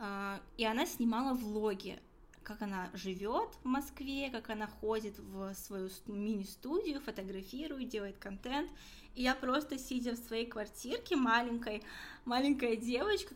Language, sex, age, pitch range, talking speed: Russian, female, 20-39, 210-255 Hz, 130 wpm